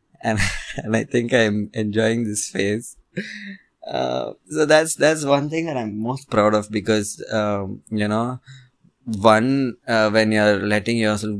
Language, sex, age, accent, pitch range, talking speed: English, male, 20-39, Indian, 95-110 Hz, 155 wpm